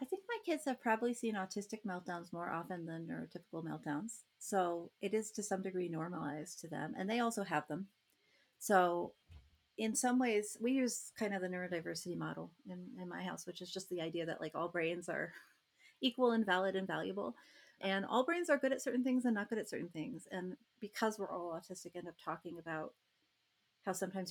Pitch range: 165-215 Hz